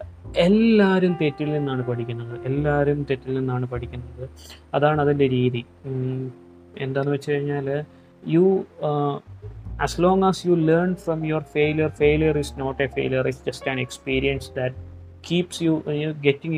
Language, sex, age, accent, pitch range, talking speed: Malayalam, male, 20-39, native, 125-155 Hz, 135 wpm